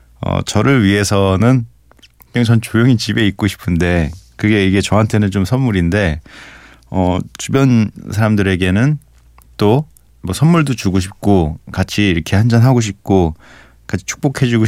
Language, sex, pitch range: Korean, male, 85-115 Hz